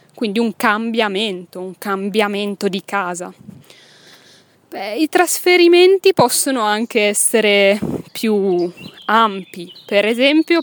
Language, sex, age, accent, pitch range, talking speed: Italian, female, 20-39, native, 195-255 Hz, 90 wpm